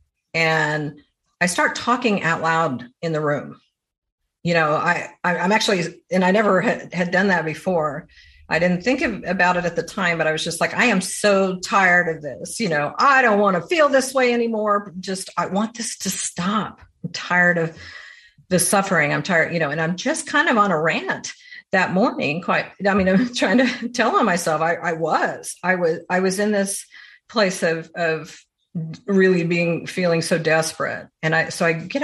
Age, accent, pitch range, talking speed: 50-69, American, 160-205 Hz, 205 wpm